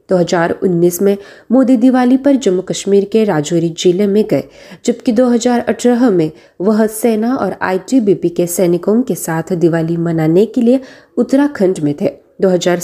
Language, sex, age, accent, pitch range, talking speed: Marathi, female, 20-39, native, 185-240 Hz, 130 wpm